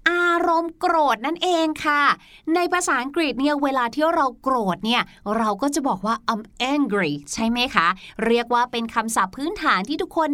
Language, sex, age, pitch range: Thai, female, 20-39, 230-310 Hz